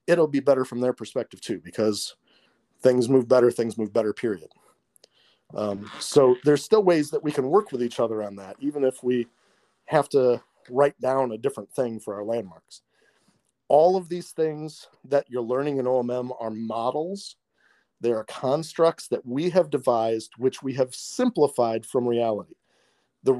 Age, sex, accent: 40-59, male, American